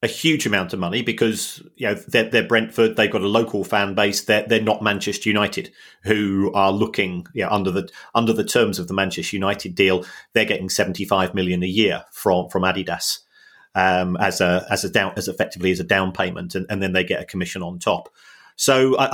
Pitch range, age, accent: 95-115 Hz, 40-59, British